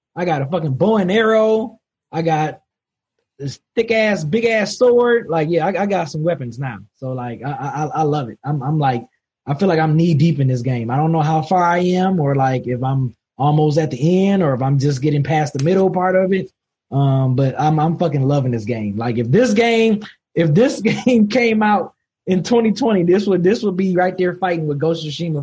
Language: English